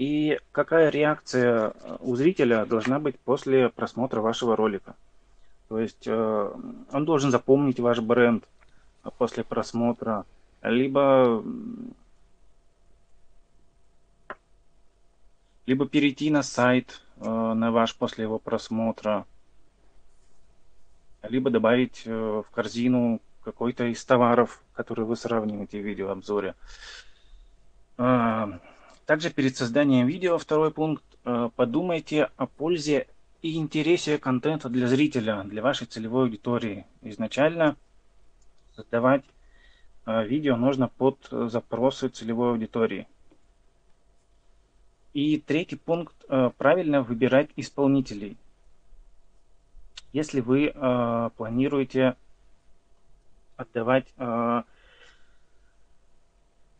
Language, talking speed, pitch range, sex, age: Russian, 80 wpm, 110-140 Hz, male, 20-39